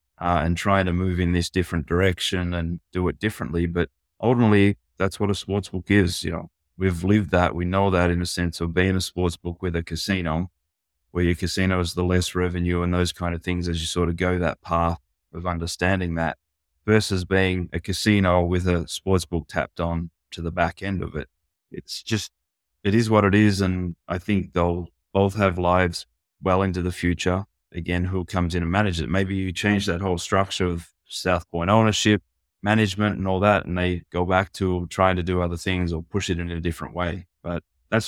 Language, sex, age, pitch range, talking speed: English, male, 20-39, 85-95 Hz, 215 wpm